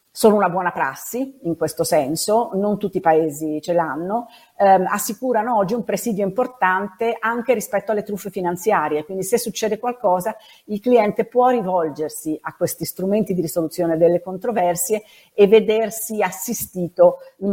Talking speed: 145 wpm